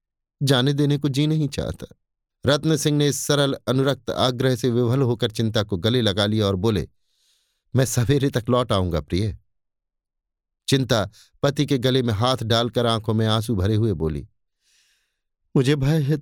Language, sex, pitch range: Hindi, male, 100-135 Hz